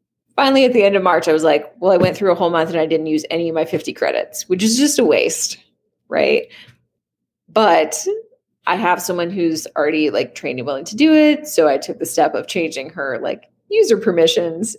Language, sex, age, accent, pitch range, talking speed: English, female, 20-39, American, 165-245 Hz, 225 wpm